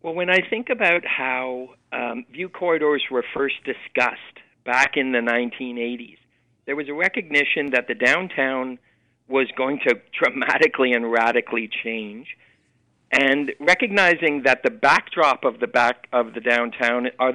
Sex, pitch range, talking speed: male, 125-175 Hz, 145 wpm